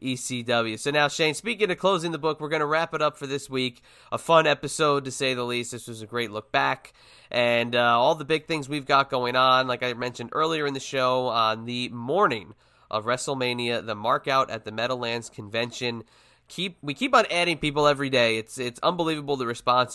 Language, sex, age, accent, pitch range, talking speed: English, male, 20-39, American, 115-140 Hz, 220 wpm